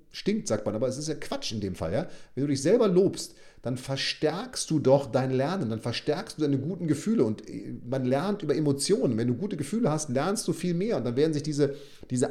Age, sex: 40-59, male